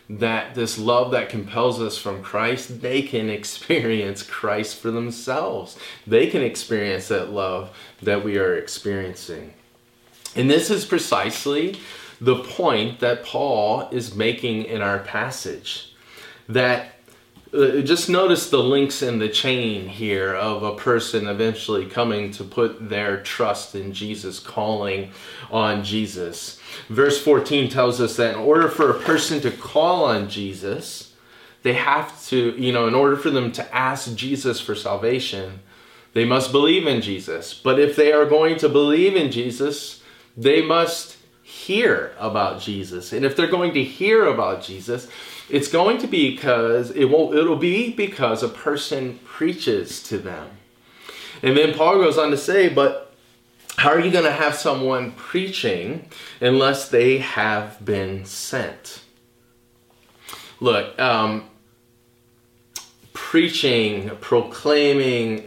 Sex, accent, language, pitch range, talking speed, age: male, American, English, 110-145 Hz, 140 wpm, 20-39